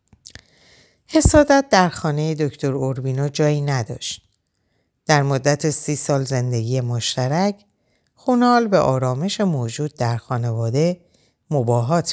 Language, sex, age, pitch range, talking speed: Persian, female, 50-69, 120-150 Hz, 100 wpm